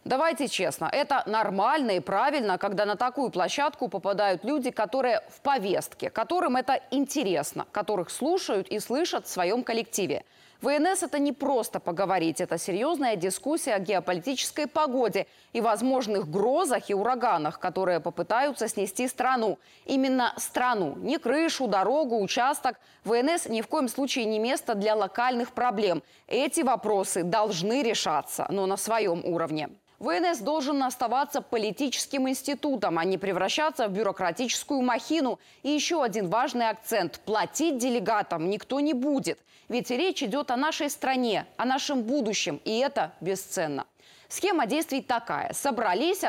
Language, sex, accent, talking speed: Russian, female, native, 135 wpm